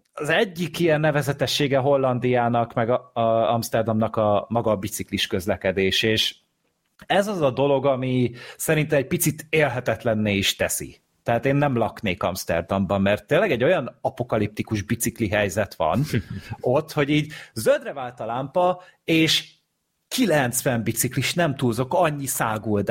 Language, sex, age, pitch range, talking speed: Hungarian, male, 30-49, 110-150 Hz, 140 wpm